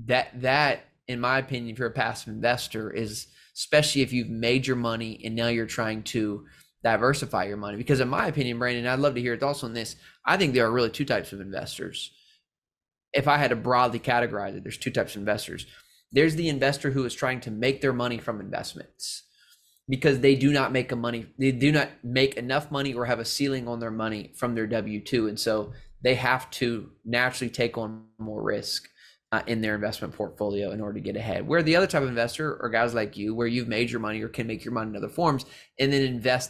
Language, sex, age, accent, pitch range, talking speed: English, male, 20-39, American, 115-135 Hz, 230 wpm